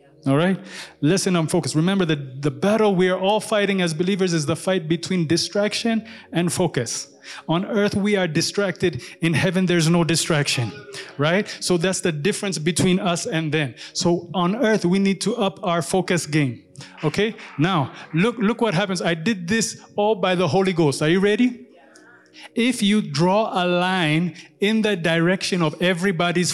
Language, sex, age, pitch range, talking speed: English, male, 30-49, 155-195 Hz, 175 wpm